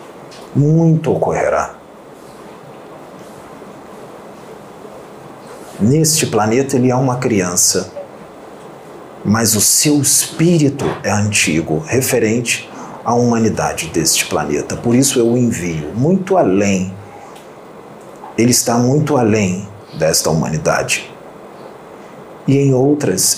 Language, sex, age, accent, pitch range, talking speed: Portuguese, male, 40-59, Brazilian, 110-140 Hz, 90 wpm